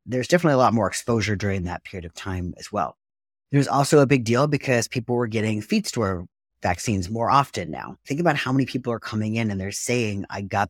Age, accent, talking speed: 30-49, American, 230 wpm